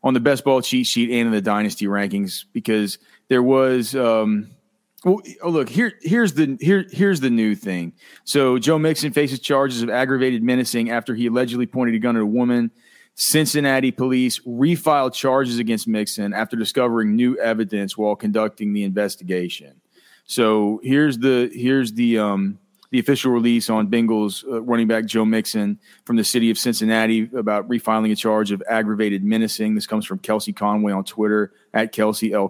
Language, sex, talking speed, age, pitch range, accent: English, male, 175 wpm, 30-49, 105-130 Hz, American